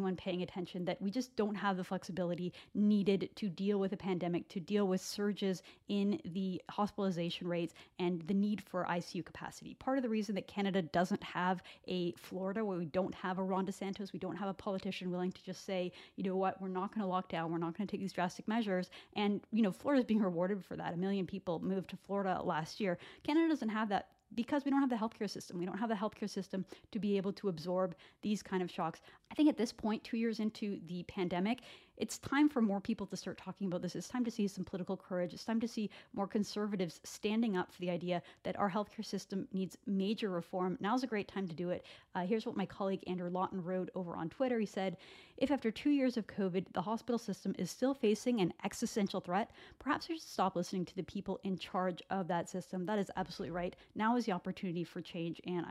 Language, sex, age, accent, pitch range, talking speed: English, female, 30-49, American, 180-210 Hz, 235 wpm